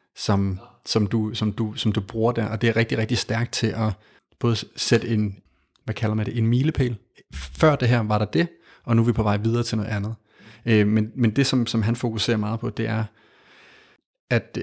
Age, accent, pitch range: 30-49, native, 105-120 Hz